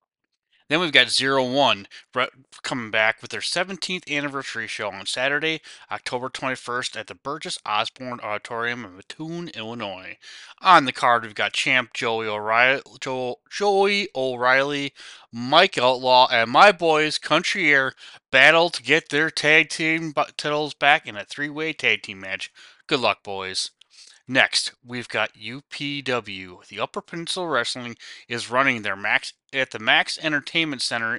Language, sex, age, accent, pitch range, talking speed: English, male, 20-39, American, 115-155 Hz, 140 wpm